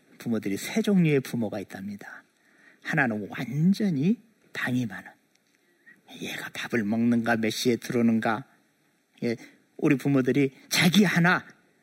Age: 50-69